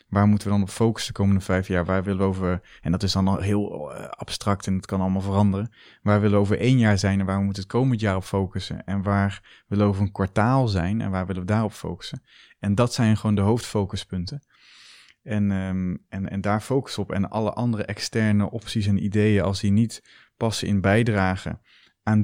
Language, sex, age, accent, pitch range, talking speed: Dutch, male, 20-39, Dutch, 95-110 Hz, 225 wpm